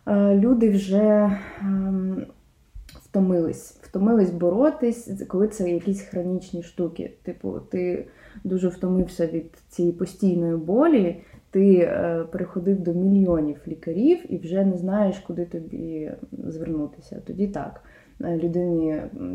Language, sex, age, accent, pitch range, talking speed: Ukrainian, female, 20-39, native, 170-205 Hz, 100 wpm